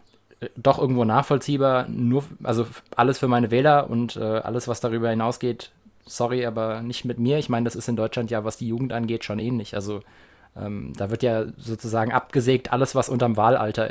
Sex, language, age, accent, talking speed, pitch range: male, German, 20-39, German, 190 wpm, 110-135 Hz